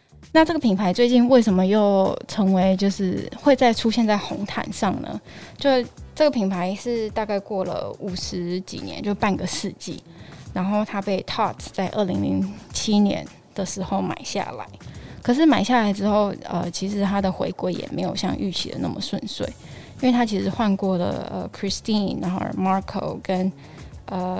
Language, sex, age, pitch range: Chinese, female, 10-29, 190-230 Hz